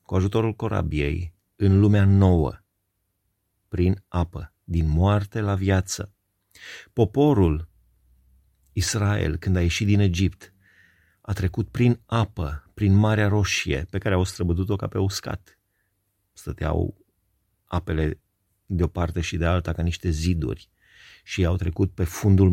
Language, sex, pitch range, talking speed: Romanian, male, 85-100 Hz, 135 wpm